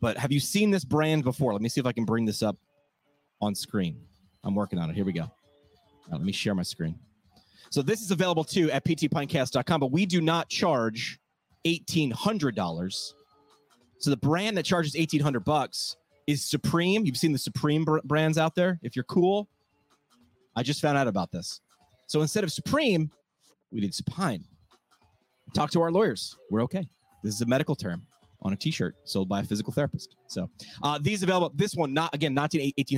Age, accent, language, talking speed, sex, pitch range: 30-49, American, English, 190 wpm, male, 115-165 Hz